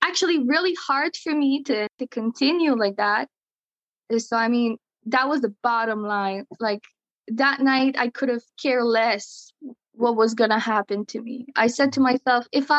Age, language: 20-39, English